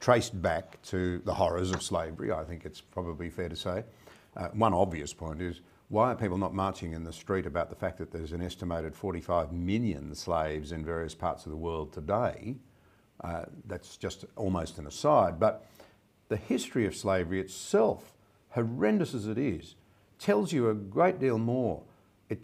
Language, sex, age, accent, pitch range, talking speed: English, male, 60-79, Australian, 90-110 Hz, 180 wpm